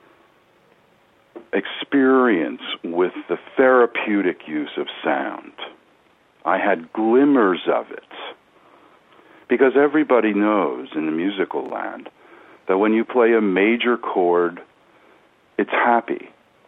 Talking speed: 100 wpm